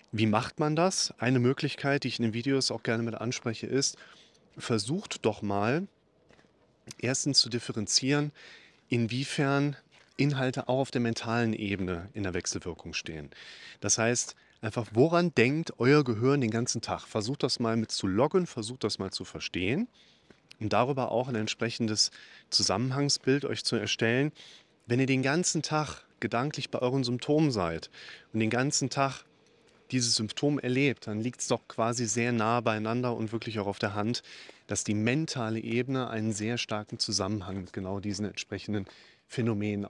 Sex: male